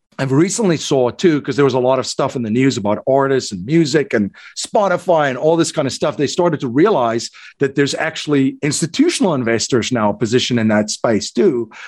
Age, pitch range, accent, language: 50-69, 125-160 Hz, American, English